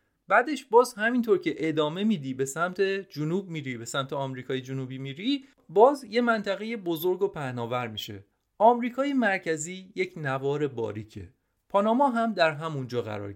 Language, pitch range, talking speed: Persian, 135-220 Hz, 145 wpm